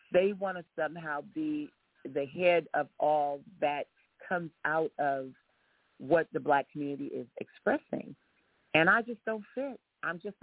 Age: 40-59